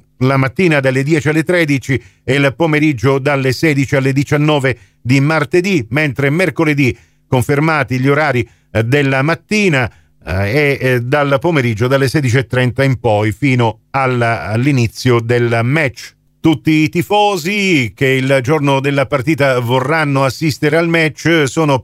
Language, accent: Italian, native